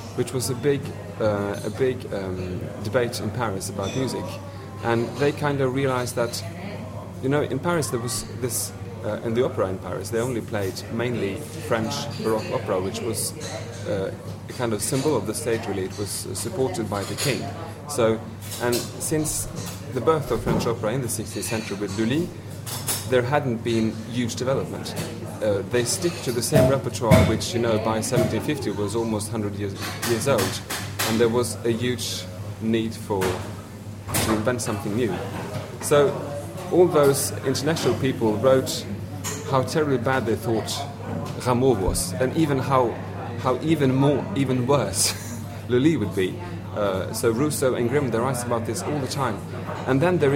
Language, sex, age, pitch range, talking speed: English, male, 30-49, 100-130 Hz, 170 wpm